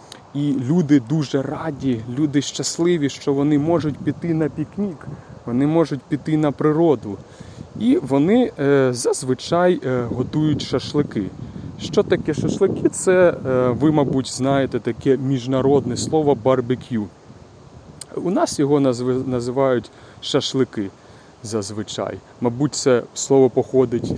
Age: 30-49